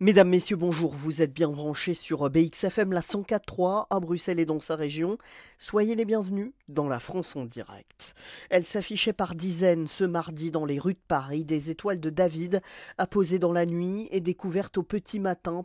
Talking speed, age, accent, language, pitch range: 190 wpm, 40-59, French, French, 145-185 Hz